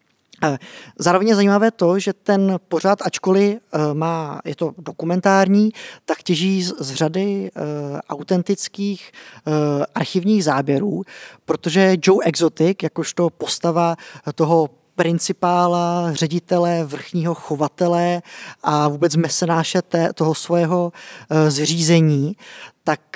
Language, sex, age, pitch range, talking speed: Czech, male, 20-39, 155-190 Hz, 105 wpm